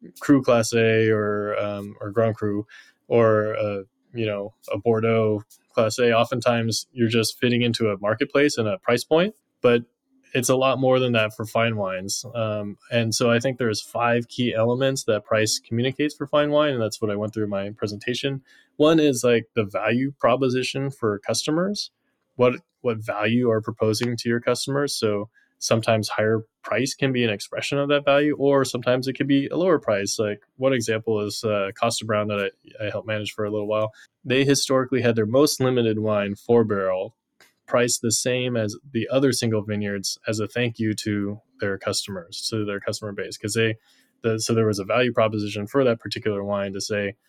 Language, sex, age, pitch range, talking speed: English, male, 20-39, 105-125 Hz, 195 wpm